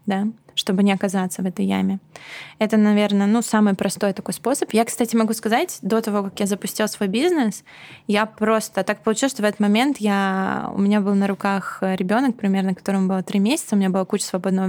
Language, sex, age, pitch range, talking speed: Russian, female, 20-39, 195-220 Hz, 205 wpm